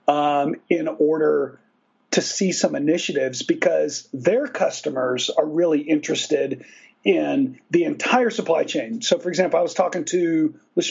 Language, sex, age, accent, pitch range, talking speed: English, male, 40-59, American, 150-230 Hz, 145 wpm